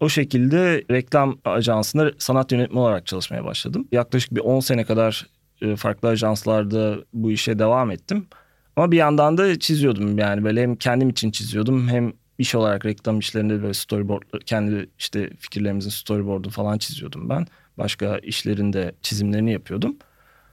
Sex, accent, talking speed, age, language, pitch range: male, native, 145 wpm, 30-49, Turkish, 105-130 Hz